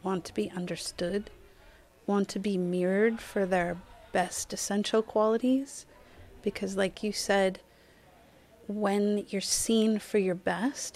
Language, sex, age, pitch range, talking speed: English, female, 30-49, 185-220 Hz, 125 wpm